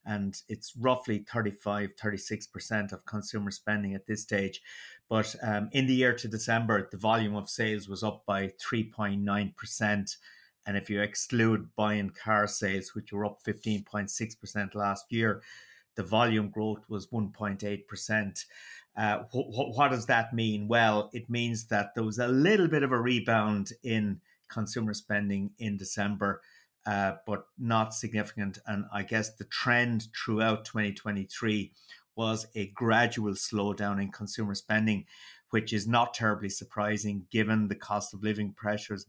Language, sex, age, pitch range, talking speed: English, male, 30-49, 105-115 Hz, 145 wpm